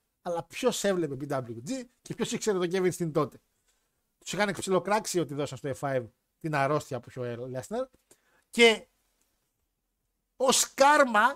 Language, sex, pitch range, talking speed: Greek, male, 140-190 Hz, 145 wpm